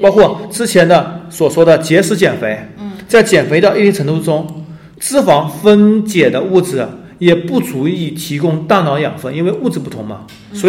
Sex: male